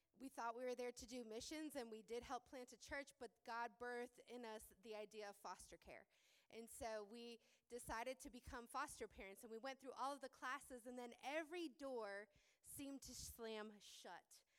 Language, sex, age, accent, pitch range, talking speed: English, female, 20-39, American, 225-280 Hz, 200 wpm